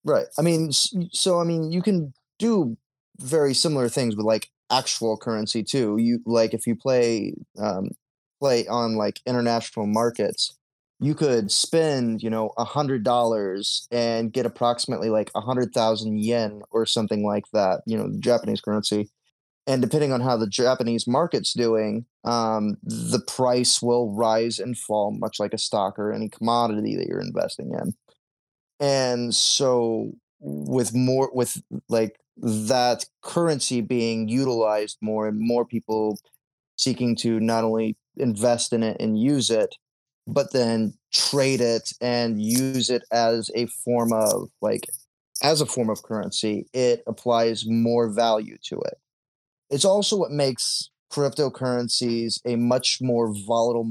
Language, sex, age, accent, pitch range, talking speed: English, male, 20-39, American, 110-130 Hz, 150 wpm